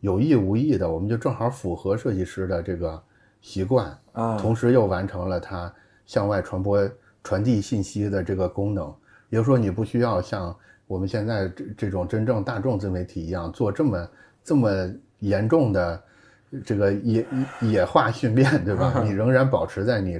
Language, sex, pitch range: Chinese, male, 95-115 Hz